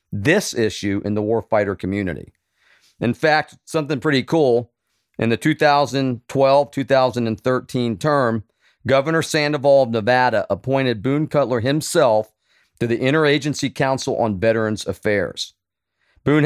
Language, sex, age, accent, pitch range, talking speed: English, male, 40-59, American, 115-145 Hz, 115 wpm